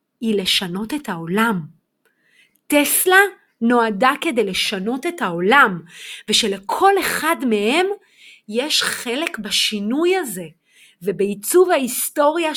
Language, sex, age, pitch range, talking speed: Hebrew, female, 30-49, 195-290 Hz, 90 wpm